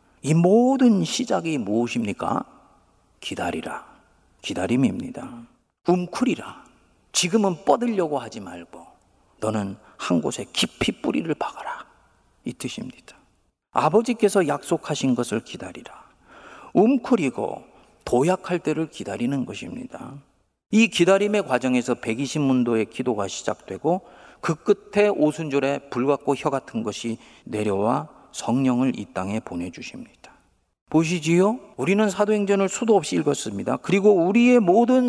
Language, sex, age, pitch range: Korean, male, 40-59, 140-205 Hz